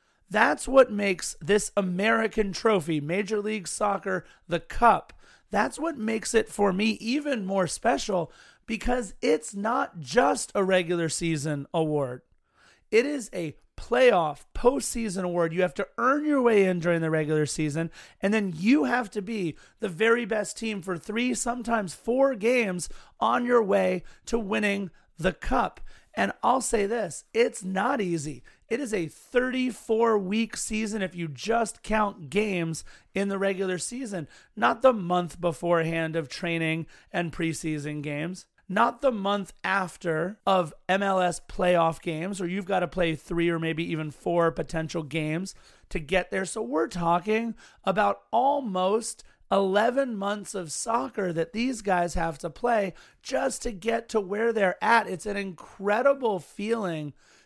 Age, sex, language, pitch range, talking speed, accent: 30-49, male, English, 170-225 Hz, 155 wpm, American